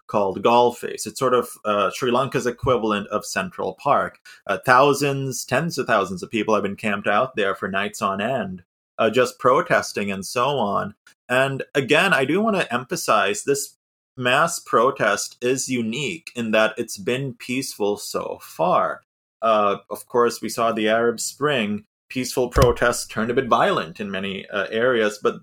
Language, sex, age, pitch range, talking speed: English, male, 30-49, 110-135 Hz, 170 wpm